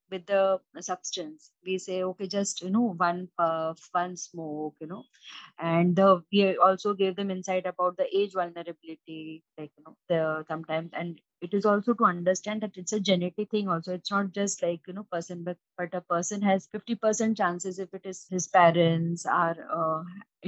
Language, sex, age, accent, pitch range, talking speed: English, female, 20-39, Indian, 170-205 Hz, 180 wpm